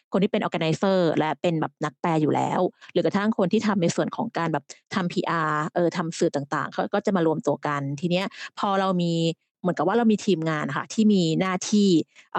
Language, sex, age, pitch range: Thai, female, 20-39, 160-200 Hz